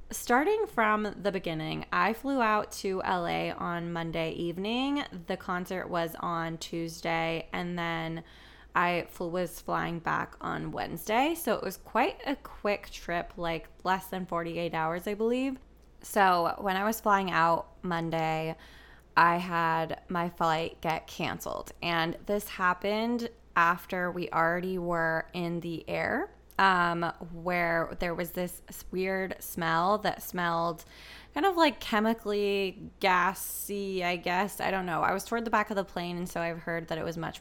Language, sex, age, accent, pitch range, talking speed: English, female, 20-39, American, 165-205 Hz, 155 wpm